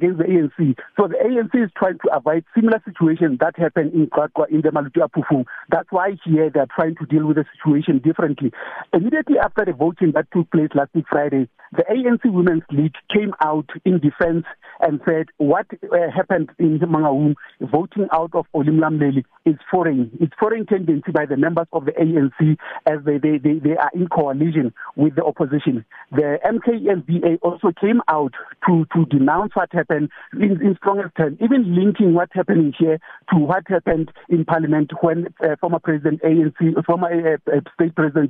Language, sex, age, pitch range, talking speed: English, male, 60-79, 150-175 Hz, 180 wpm